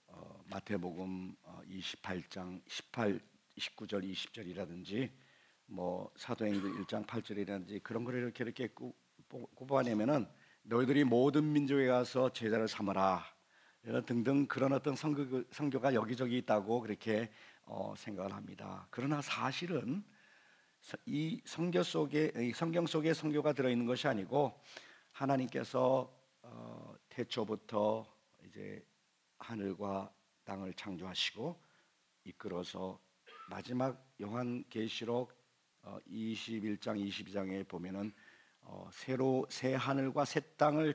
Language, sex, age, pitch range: Korean, male, 50-69, 105-140 Hz